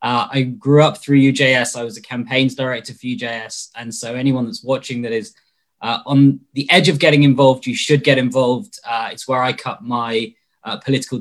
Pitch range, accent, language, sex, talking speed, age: 115-140 Hz, British, English, male, 210 wpm, 20-39